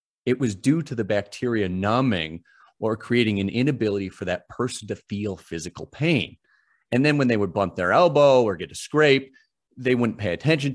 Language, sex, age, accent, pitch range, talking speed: English, male, 40-59, American, 100-125 Hz, 190 wpm